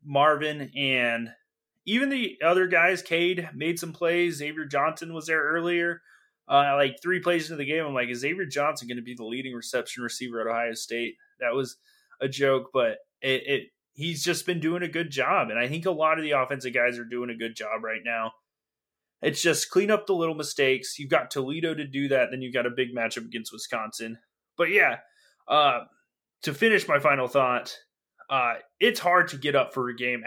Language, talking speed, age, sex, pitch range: English, 210 wpm, 20-39, male, 120-170 Hz